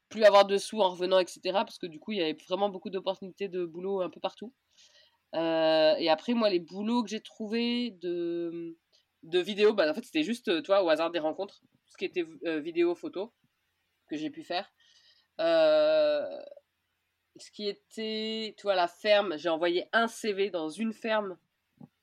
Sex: female